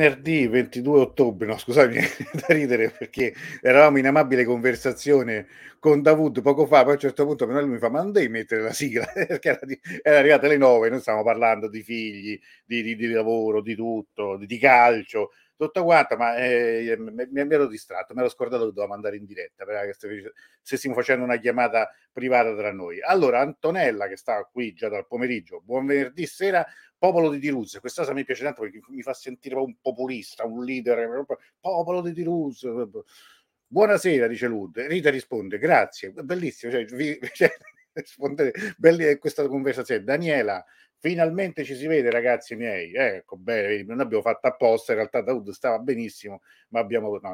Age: 50-69